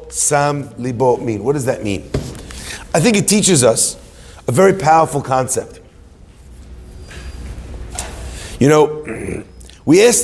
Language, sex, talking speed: English, male, 115 wpm